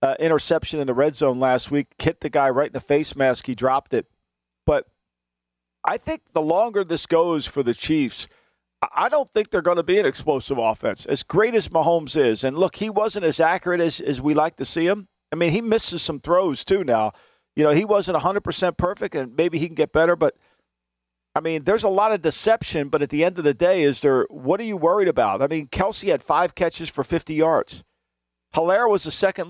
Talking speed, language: 230 wpm, English